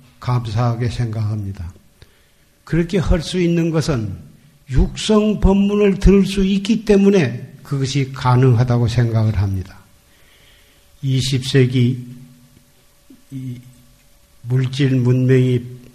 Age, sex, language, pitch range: 50-69, male, Korean, 120-140 Hz